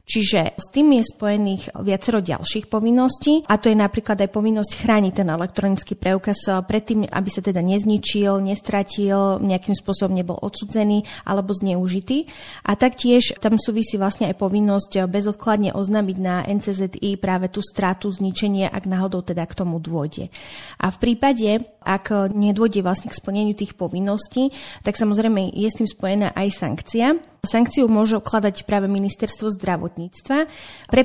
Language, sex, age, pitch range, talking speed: Slovak, female, 30-49, 190-220 Hz, 145 wpm